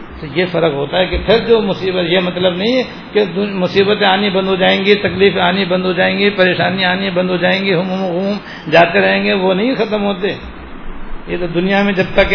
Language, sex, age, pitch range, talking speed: Urdu, male, 60-79, 170-205 Hz, 235 wpm